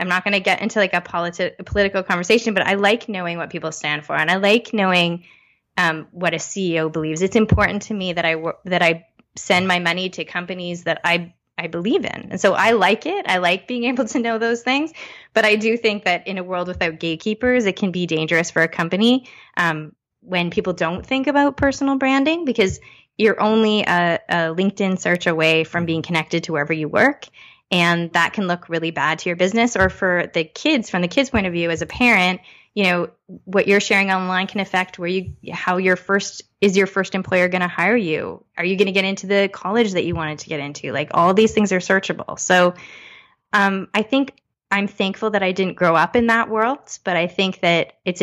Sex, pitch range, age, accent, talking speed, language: female, 170-210 Hz, 20-39, American, 230 wpm, English